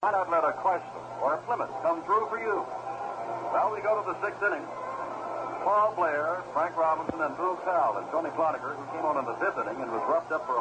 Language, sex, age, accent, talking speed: English, male, 60-79, American, 240 wpm